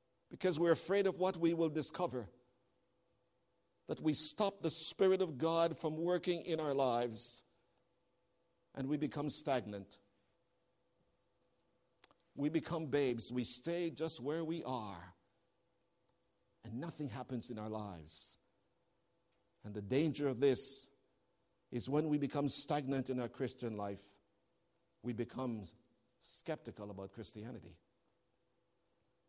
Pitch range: 120-170 Hz